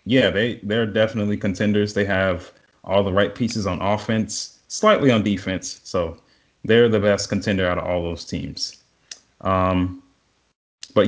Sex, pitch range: male, 95-115 Hz